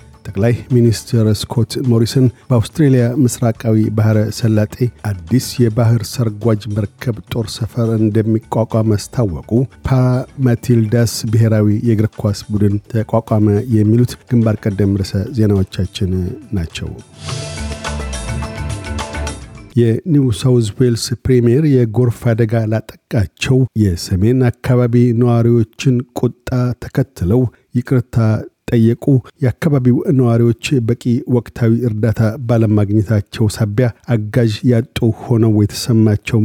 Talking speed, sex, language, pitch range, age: 85 wpm, male, Amharic, 110-125 Hz, 50-69